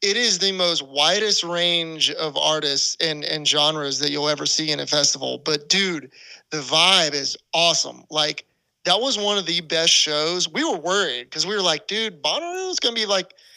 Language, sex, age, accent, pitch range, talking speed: English, male, 30-49, American, 150-180 Hz, 200 wpm